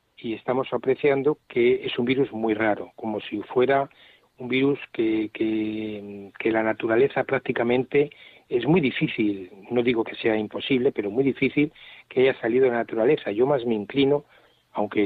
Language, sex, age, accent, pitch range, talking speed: Spanish, male, 40-59, Spanish, 110-140 Hz, 165 wpm